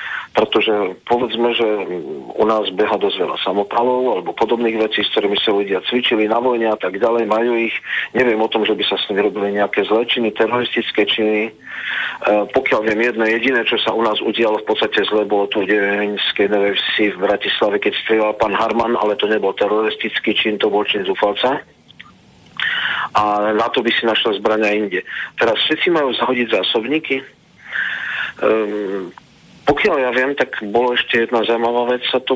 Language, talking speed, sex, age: Slovak, 175 wpm, male, 40-59